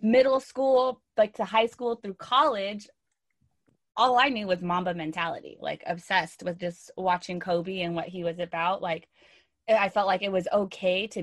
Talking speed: 175 wpm